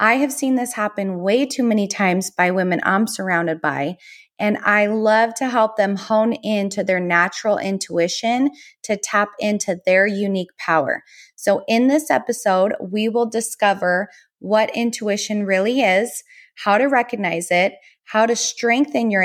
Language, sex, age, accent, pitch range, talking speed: English, female, 20-39, American, 180-230 Hz, 155 wpm